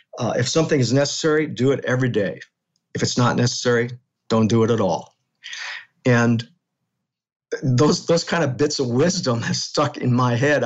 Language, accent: English, American